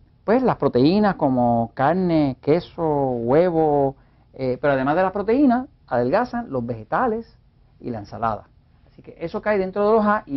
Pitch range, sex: 120-185 Hz, male